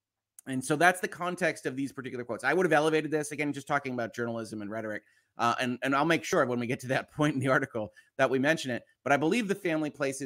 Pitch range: 120-150 Hz